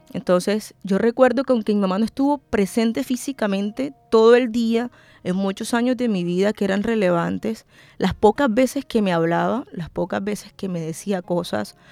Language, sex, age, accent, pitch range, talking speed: Spanish, female, 20-39, American, 185-235 Hz, 180 wpm